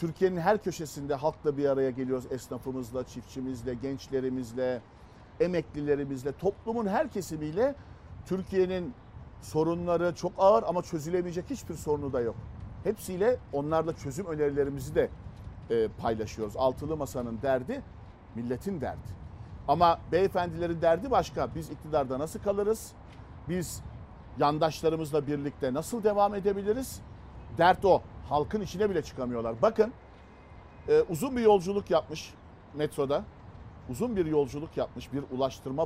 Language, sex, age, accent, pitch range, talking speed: Turkish, male, 50-69, native, 125-180 Hz, 115 wpm